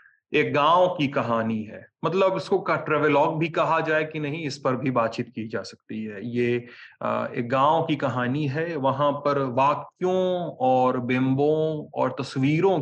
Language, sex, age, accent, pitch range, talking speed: Hindi, male, 30-49, native, 120-155 Hz, 165 wpm